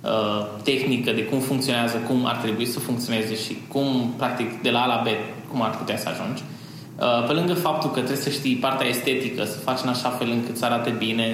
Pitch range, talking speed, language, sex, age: 115-135 Hz, 210 wpm, Romanian, male, 20-39